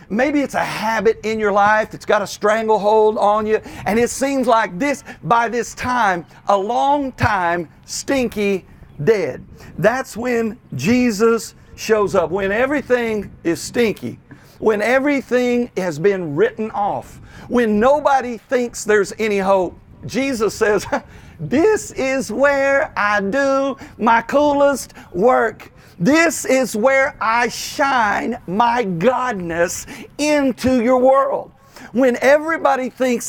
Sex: male